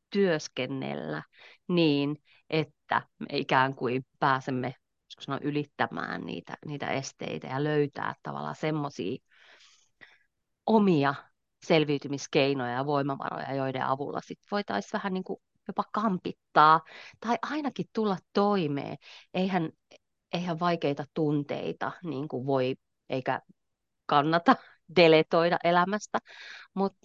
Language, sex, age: Finnish, female, 30-49